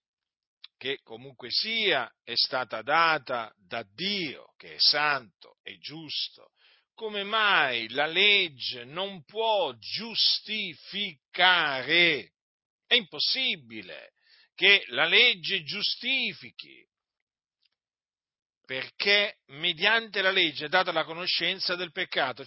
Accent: native